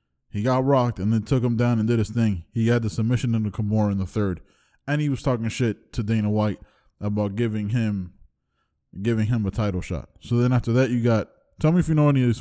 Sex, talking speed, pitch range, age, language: male, 245 wpm, 105-135 Hz, 20-39, English